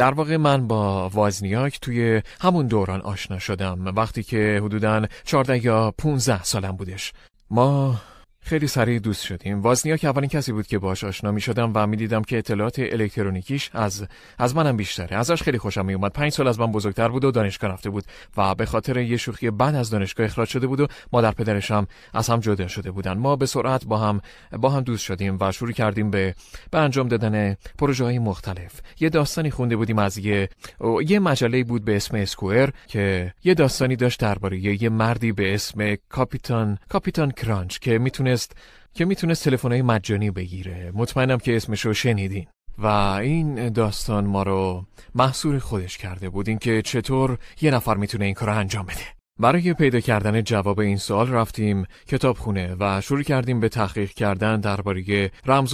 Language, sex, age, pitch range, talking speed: Persian, male, 30-49, 100-130 Hz, 165 wpm